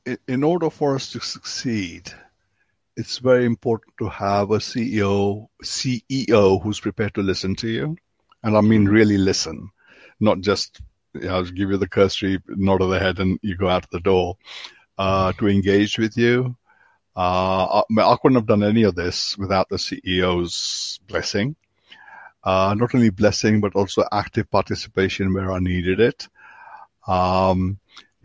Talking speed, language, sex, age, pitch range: 160 wpm, English, male, 60-79, 90-105 Hz